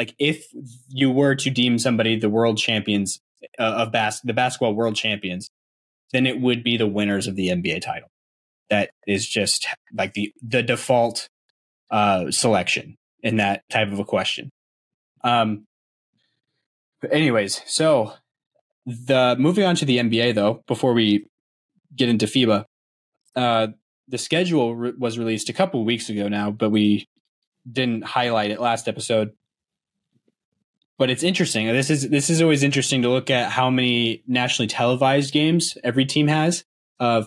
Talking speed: 150 wpm